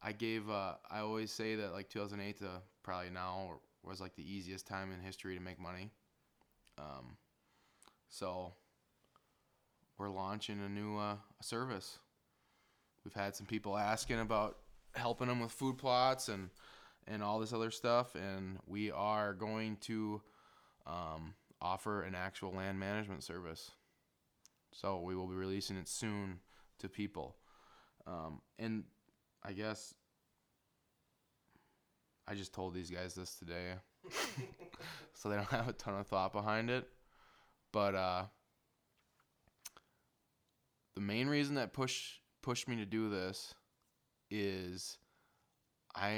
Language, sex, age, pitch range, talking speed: English, male, 20-39, 95-110 Hz, 135 wpm